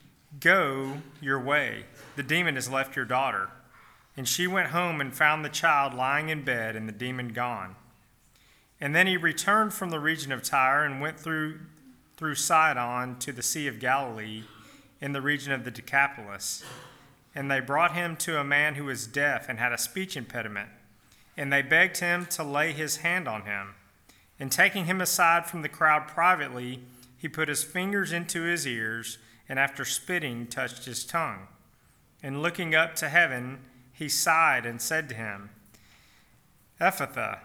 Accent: American